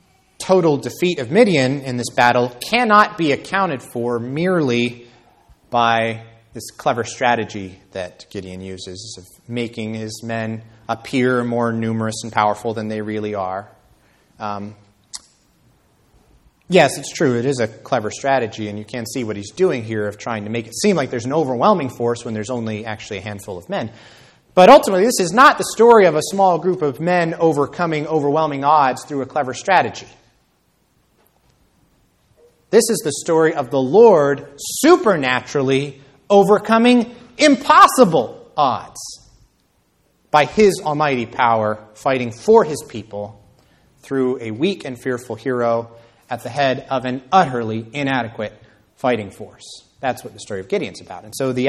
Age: 30-49